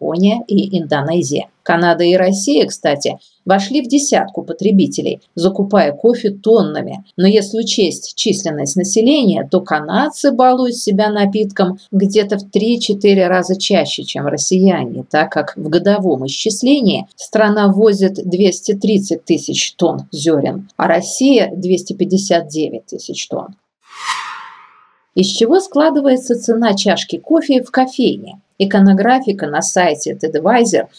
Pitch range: 180-230 Hz